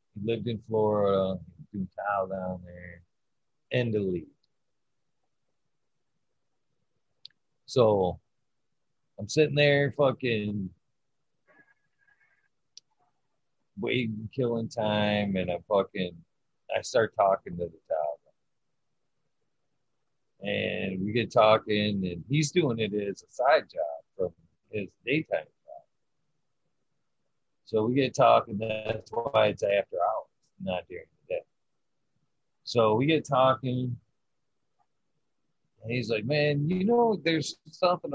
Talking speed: 105 wpm